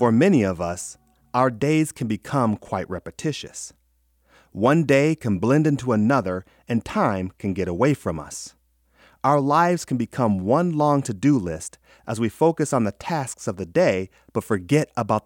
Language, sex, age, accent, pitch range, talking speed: English, male, 40-59, American, 95-145 Hz, 170 wpm